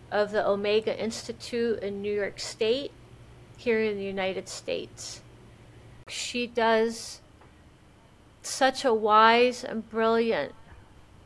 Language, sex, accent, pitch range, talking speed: English, female, American, 195-235 Hz, 105 wpm